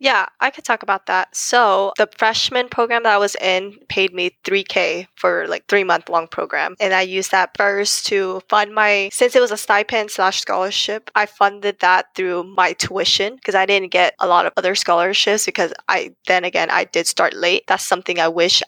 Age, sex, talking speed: 10-29, female, 210 wpm